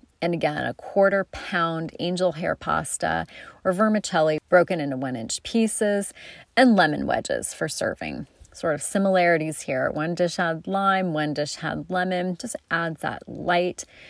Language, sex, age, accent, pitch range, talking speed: English, female, 30-49, American, 155-195 Hz, 155 wpm